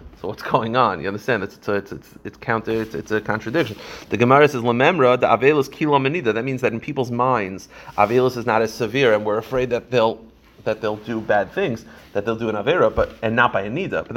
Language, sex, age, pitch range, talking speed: English, male, 30-49, 110-130 Hz, 230 wpm